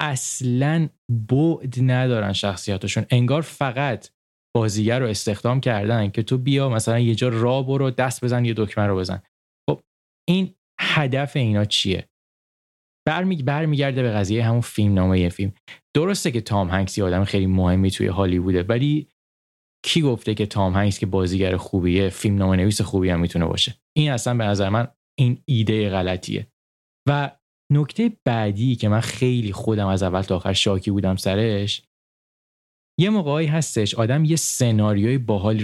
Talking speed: 155 wpm